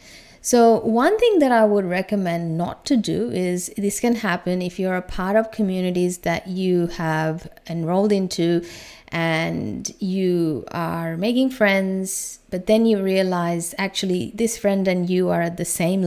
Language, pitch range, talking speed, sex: English, 180-225 Hz, 160 wpm, female